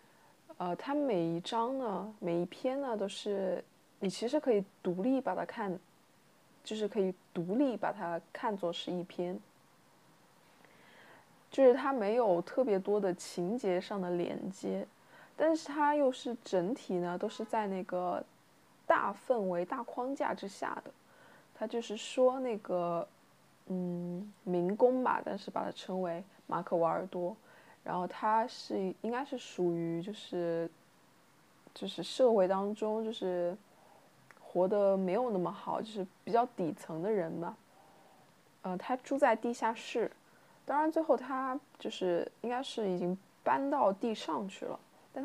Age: 20-39